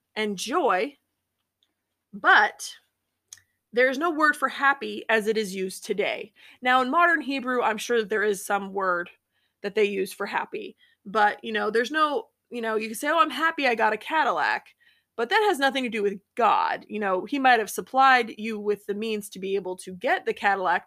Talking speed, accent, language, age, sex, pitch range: 205 wpm, American, English, 20-39, female, 205-275 Hz